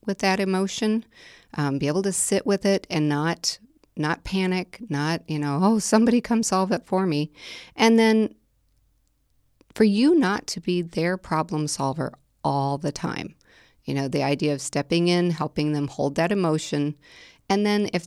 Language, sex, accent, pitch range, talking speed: English, female, American, 145-185 Hz, 175 wpm